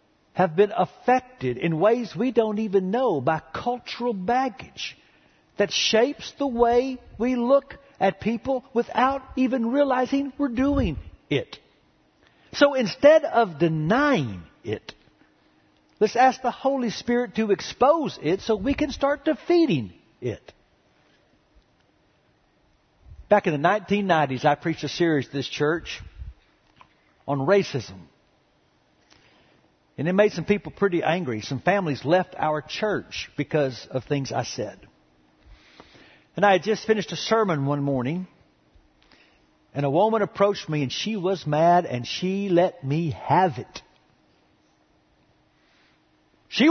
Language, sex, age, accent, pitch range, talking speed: English, male, 60-79, American, 150-235 Hz, 130 wpm